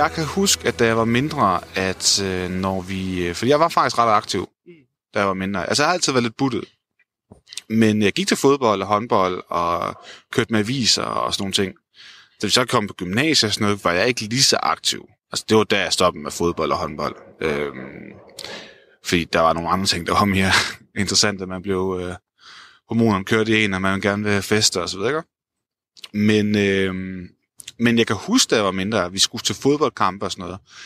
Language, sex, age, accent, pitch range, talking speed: Danish, male, 20-39, native, 95-125 Hz, 225 wpm